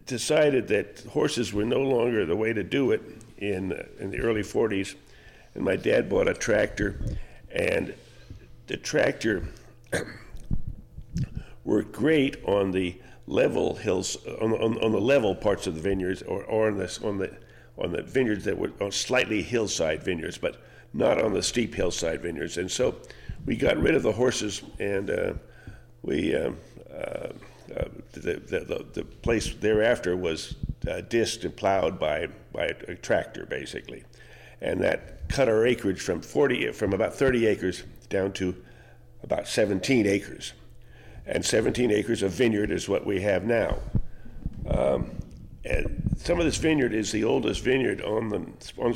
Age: 50-69